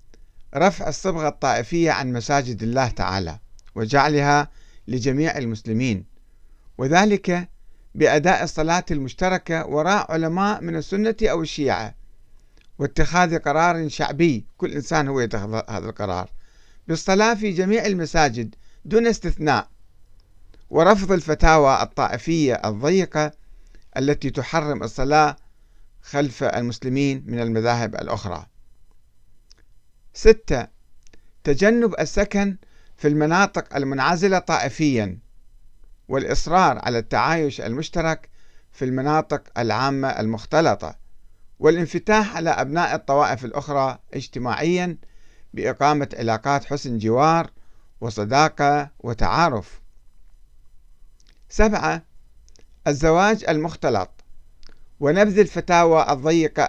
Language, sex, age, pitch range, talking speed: Arabic, male, 50-69, 115-165 Hz, 85 wpm